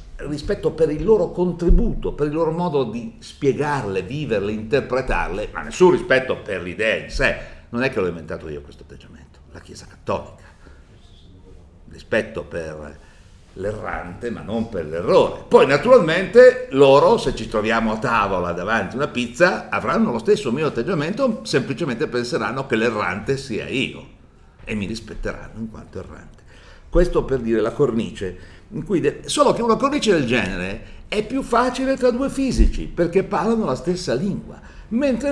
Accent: native